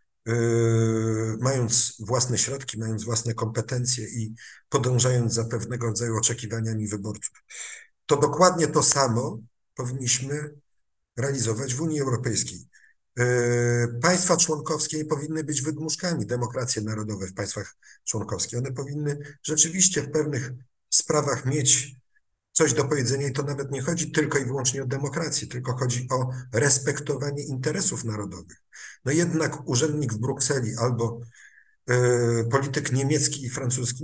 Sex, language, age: male, Polish, 50-69